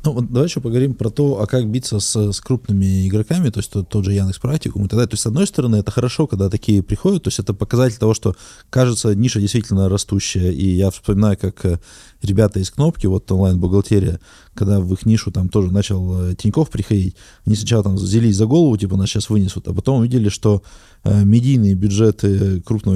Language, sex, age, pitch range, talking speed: Russian, male, 20-39, 100-120 Hz, 205 wpm